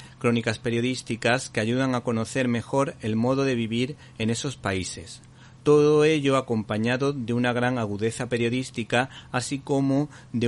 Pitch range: 110-130 Hz